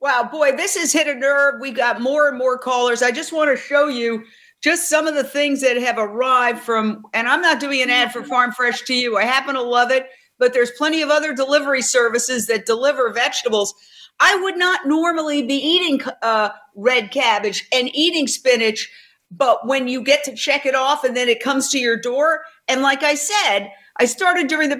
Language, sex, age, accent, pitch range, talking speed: English, female, 50-69, American, 250-310 Hz, 215 wpm